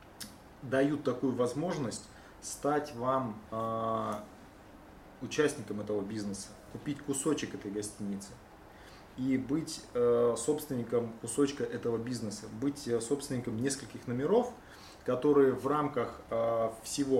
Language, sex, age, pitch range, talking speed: Russian, male, 20-39, 110-130 Hz, 90 wpm